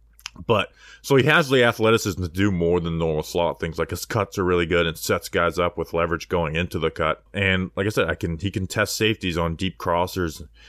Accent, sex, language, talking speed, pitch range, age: American, male, English, 235 wpm, 85-100 Hz, 20-39